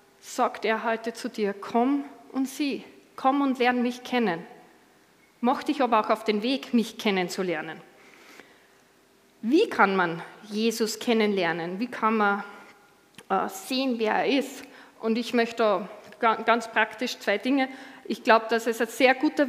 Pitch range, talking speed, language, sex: 220-270 Hz, 150 wpm, German, female